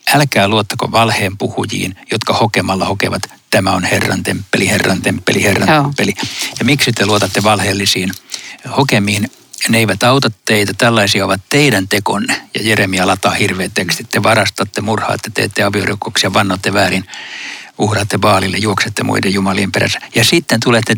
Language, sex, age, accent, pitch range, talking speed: Finnish, male, 60-79, native, 100-125 Hz, 140 wpm